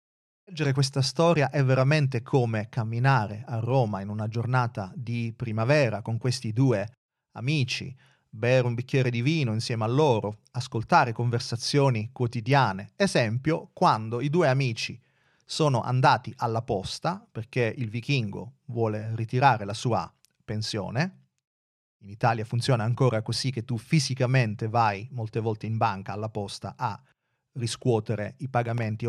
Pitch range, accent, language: 115-140 Hz, native, Italian